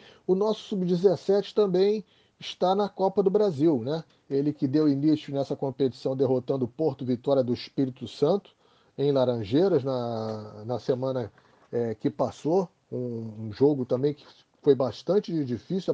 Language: Portuguese